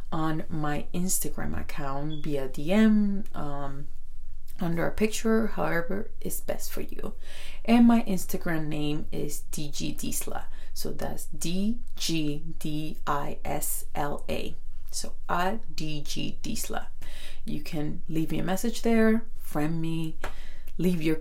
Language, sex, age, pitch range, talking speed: Spanish, female, 30-49, 145-190 Hz, 105 wpm